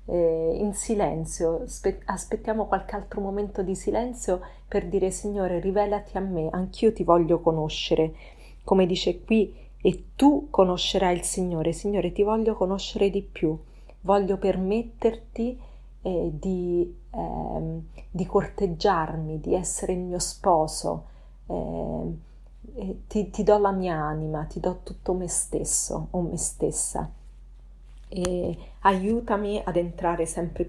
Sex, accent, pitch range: female, native, 165-205 Hz